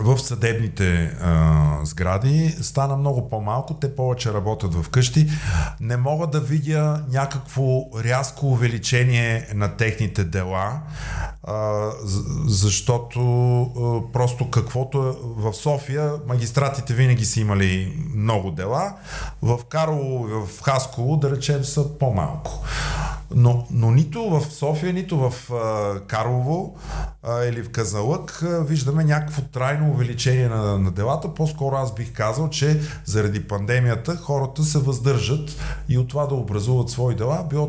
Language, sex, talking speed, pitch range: Bulgarian, male, 130 wpm, 110-145 Hz